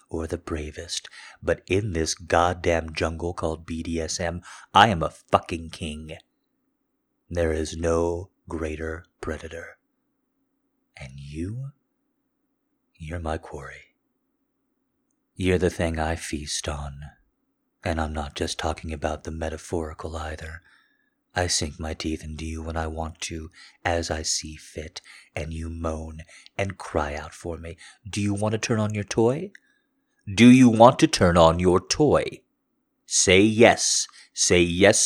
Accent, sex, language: American, male, English